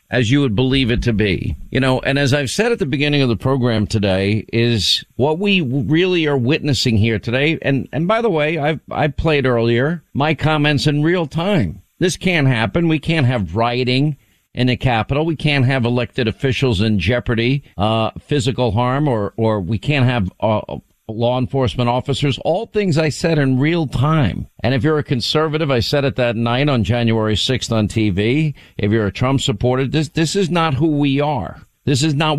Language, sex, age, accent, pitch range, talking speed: English, male, 50-69, American, 115-155 Hz, 200 wpm